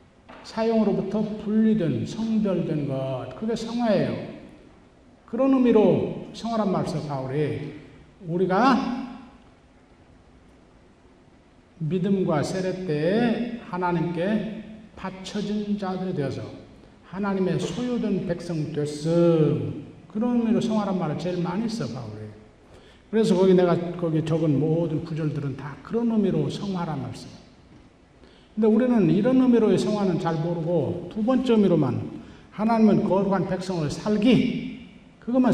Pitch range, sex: 170-220 Hz, male